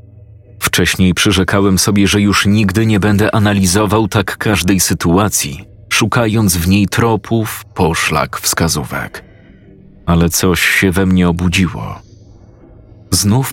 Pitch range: 95-110 Hz